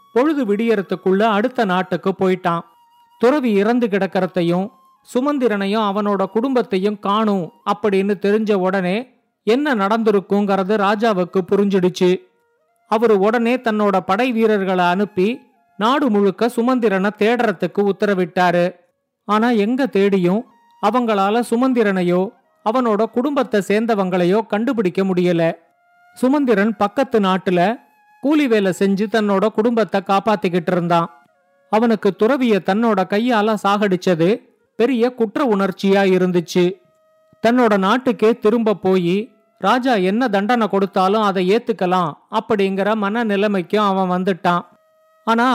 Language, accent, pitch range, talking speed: Tamil, native, 190-235 Hz, 95 wpm